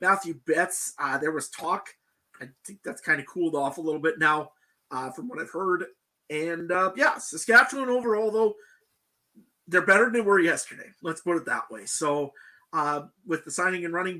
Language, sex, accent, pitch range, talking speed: English, male, American, 140-175 Hz, 195 wpm